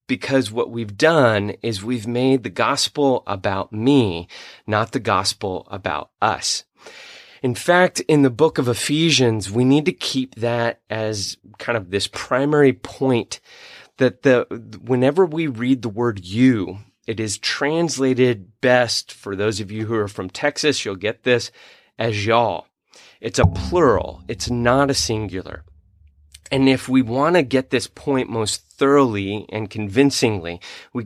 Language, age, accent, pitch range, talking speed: English, 30-49, American, 105-130 Hz, 155 wpm